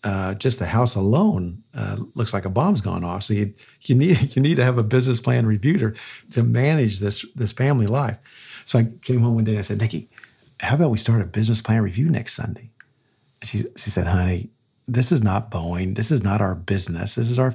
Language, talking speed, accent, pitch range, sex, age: English, 225 wpm, American, 100-125 Hz, male, 50-69